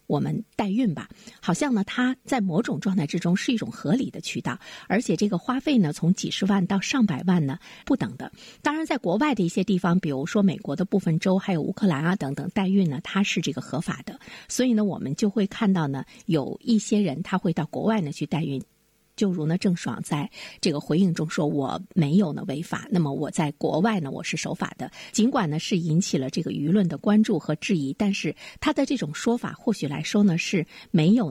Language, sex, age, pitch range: Chinese, female, 50-69, 170-225 Hz